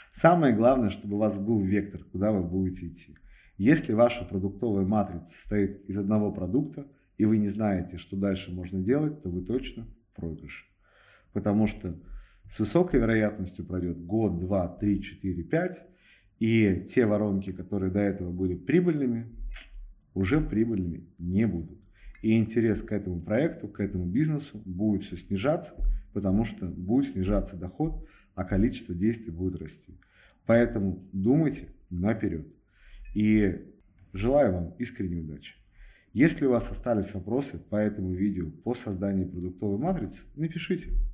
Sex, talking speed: male, 140 wpm